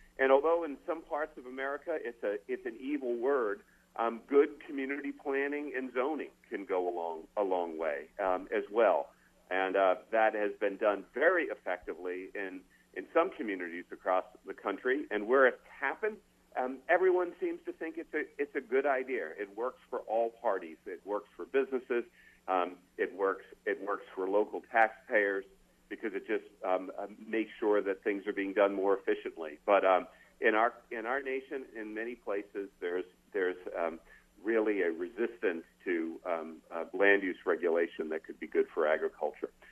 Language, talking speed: English, 180 wpm